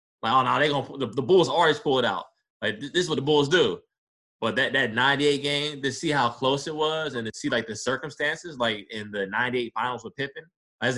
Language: English